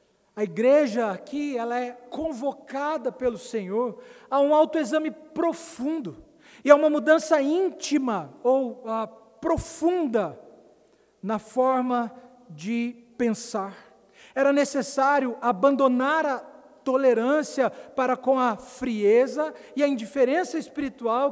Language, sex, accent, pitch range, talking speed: Portuguese, male, Brazilian, 215-285 Hz, 105 wpm